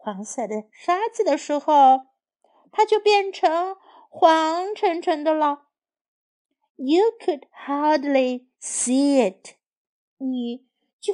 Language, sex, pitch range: Chinese, female, 225-330 Hz